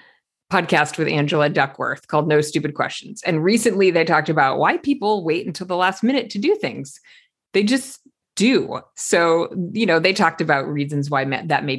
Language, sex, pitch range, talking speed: English, female, 150-200 Hz, 185 wpm